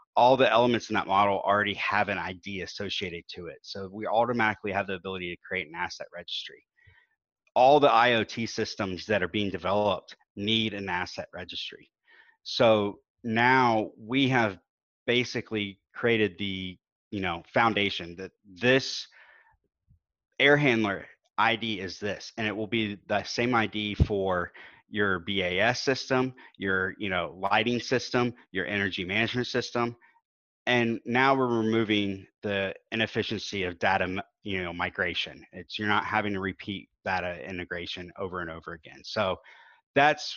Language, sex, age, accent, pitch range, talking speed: English, male, 30-49, American, 95-115 Hz, 145 wpm